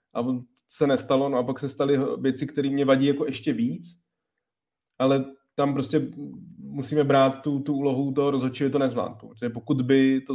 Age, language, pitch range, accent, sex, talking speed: 20-39, Czech, 115-150 Hz, native, male, 175 wpm